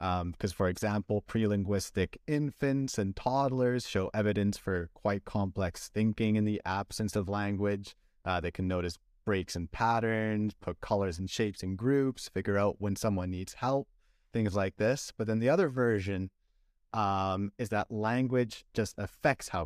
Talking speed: 160 wpm